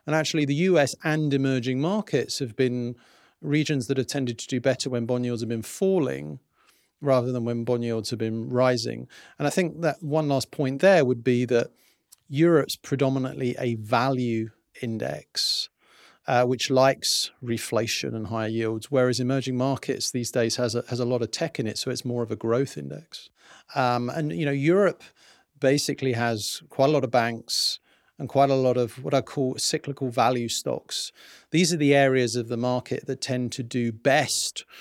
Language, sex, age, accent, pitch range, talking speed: English, male, 40-59, British, 120-145 Hz, 190 wpm